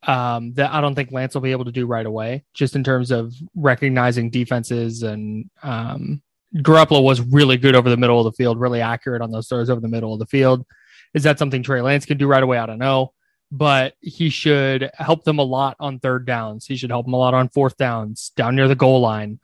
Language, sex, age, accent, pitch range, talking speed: English, male, 20-39, American, 125-145 Hz, 240 wpm